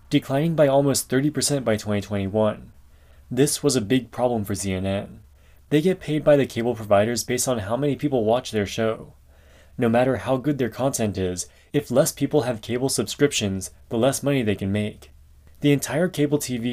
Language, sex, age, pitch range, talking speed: English, male, 20-39, 100-135 Hz, 185 wpm